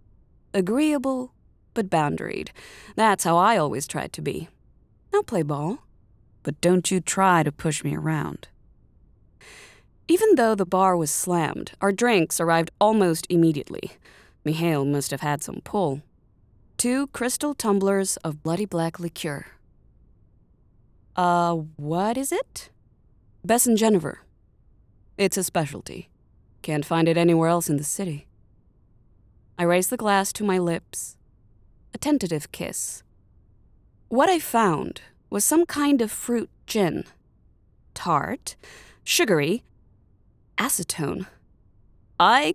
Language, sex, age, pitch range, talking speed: English, female, 20-39, 145-210 Hz, 120 wpm